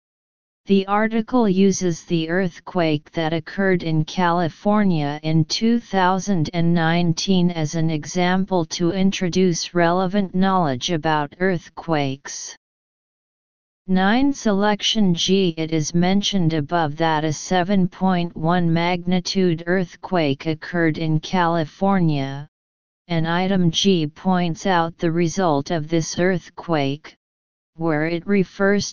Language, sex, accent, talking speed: English, female, American, 100 wpm